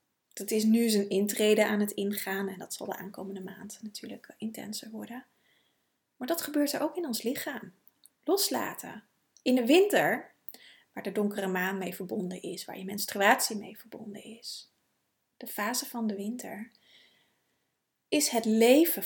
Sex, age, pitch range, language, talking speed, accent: female, 30-49, 200-245 Hz, Dutch, 155 wpm, Dutch